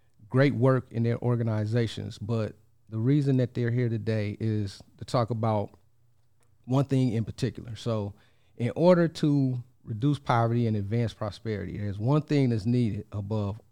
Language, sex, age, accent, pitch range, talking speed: English, male, 40-59, American, 105-120 Hz, 155 wpm